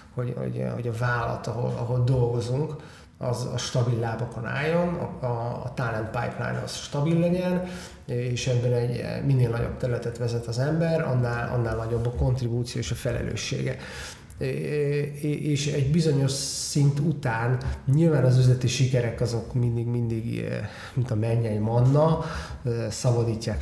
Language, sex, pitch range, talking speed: Hungarian, male, 115-130 Hz, 135 wpm